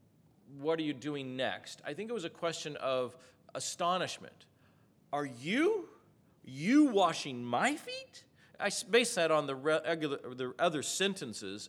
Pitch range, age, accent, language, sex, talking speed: 145-205 Hz, 40-59, American, English, male, 140 wpm